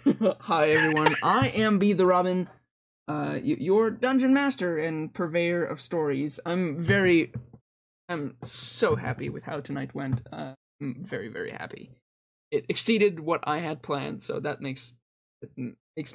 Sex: male